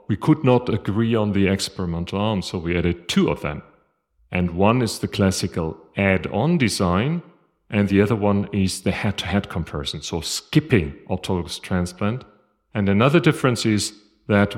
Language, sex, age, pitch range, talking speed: English, male, 40-59, 90-115 Hz, 155 wpm